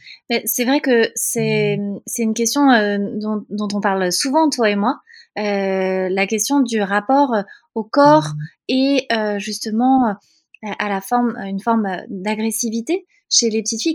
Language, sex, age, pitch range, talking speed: French, female, 20-39, 210-260 Hz, 150 wpm